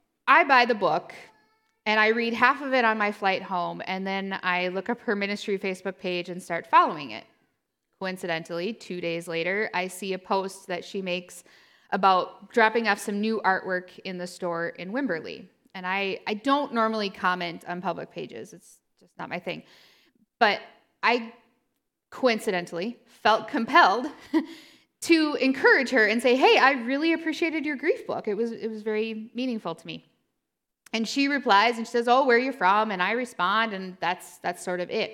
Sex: female